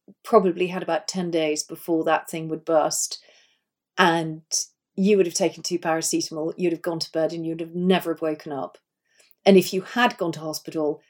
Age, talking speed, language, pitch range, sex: 40-59, 190 wpm, English, 165-195 Hz, female